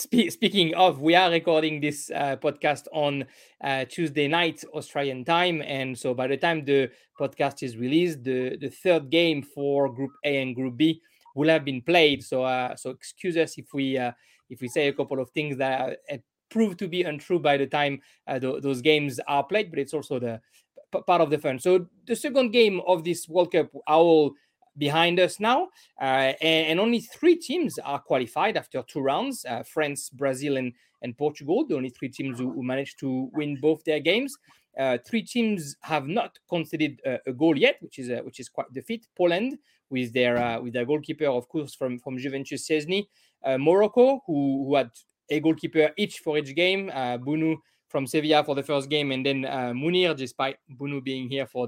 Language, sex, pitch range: English, male, 135-170 Hz